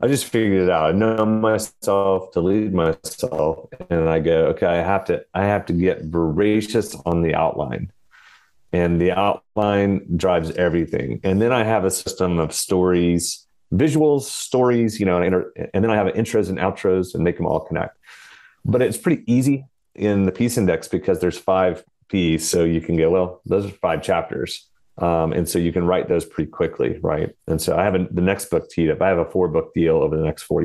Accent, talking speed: American, 210 wpm